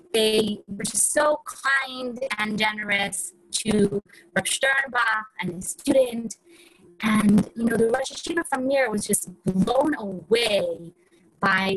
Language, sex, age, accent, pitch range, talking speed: English, female, 20-39, American, 195-260 Hz, 135 wpm